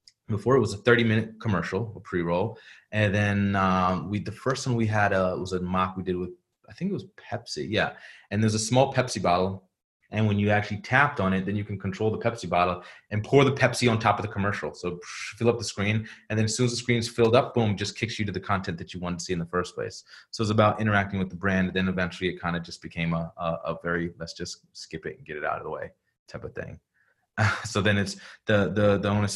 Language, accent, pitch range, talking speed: English, American, 90-110 Hz, 270 wpm